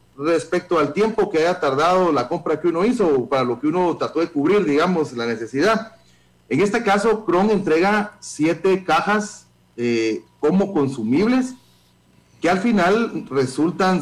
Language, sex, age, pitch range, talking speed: Spanish, male, 40-59, 120-180 Hz, 155 wpm